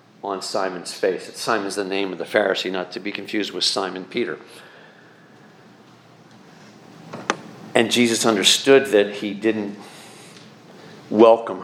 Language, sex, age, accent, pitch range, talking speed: English, male, 50-69, American, 115-180 Hz, 125 wpm